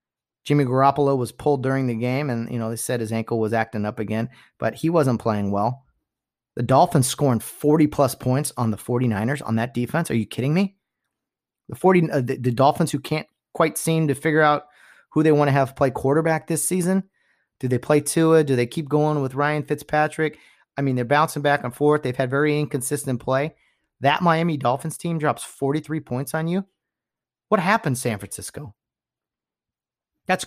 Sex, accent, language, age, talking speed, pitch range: male, American, English, 30-49, 195 wpm, 120-155 Hz